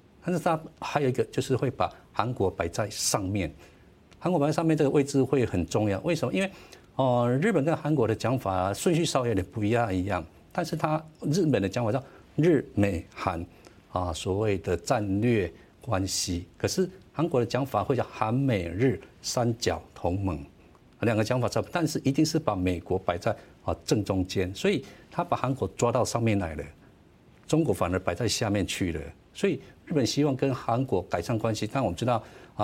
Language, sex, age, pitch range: Chinese, male, 50-69, 95-125 Hz